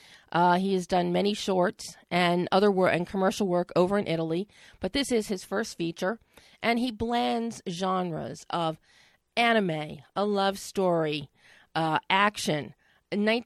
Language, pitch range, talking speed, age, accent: English, 170-210 Hz, 145 wpm, 40-59, American